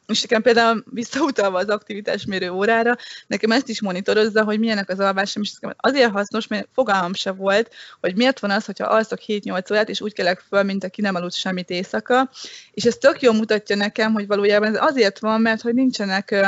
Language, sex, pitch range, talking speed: Hungarian, female, 195-220 Hz, 195 wpm